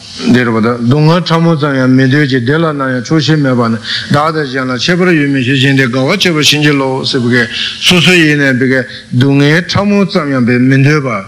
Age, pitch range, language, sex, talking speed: 60-79, 120-155 Hz, Italian, male, 115 wpm